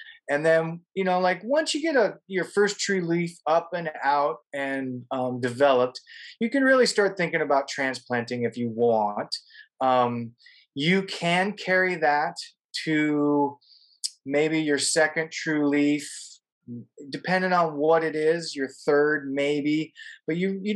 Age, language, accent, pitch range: 20-39, English, American, 125-155 Hz